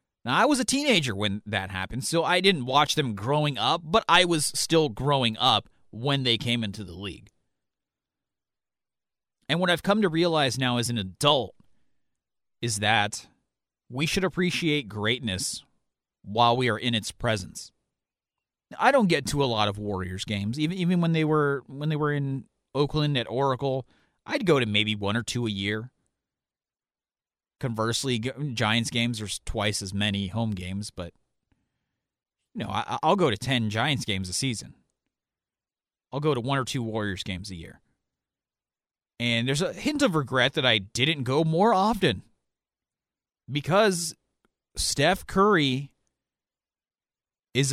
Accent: American